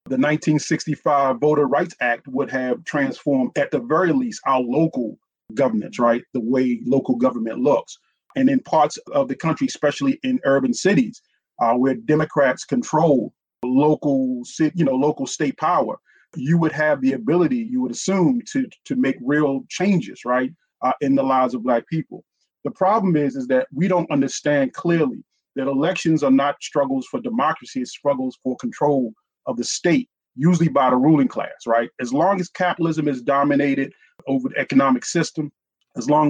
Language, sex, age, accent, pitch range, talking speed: English, male, 30-49, American, 135-185 Hz, 170 wpm